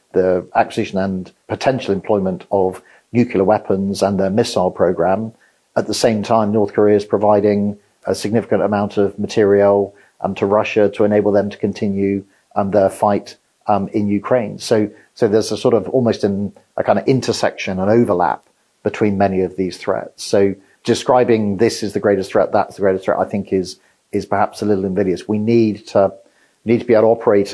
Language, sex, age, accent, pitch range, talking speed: English, male, 40-59, British, 95-105 Hz, 185 wpm